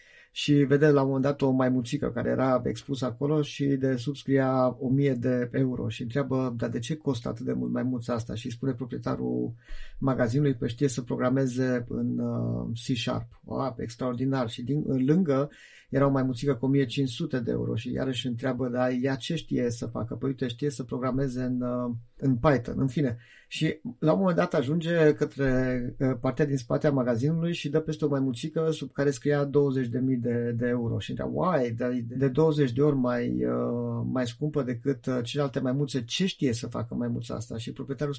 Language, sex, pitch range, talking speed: Romanian, male, 125-150 Hz, 185 wpm